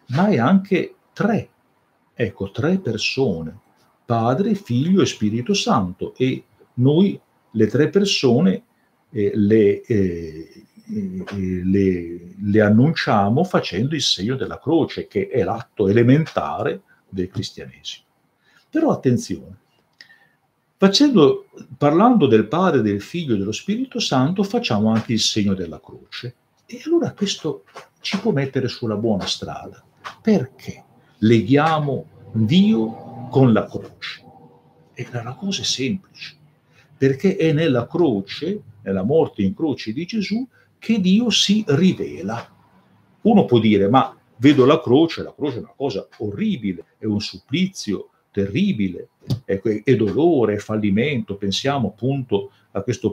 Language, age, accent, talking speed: Italian, 50-69, native, 120 wpm